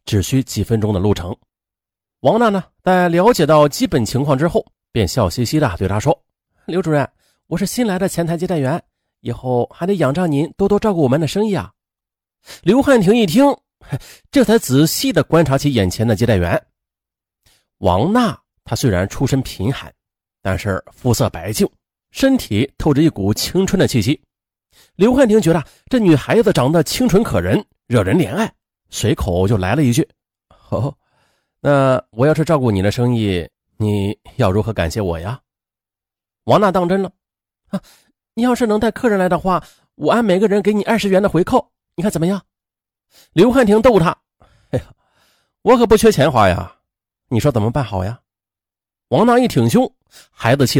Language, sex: Chinese, male